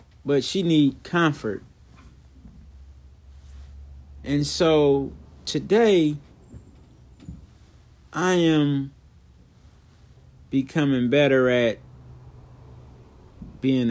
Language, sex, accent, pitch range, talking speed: English, male, American, 105-150 Hz, 55 wpm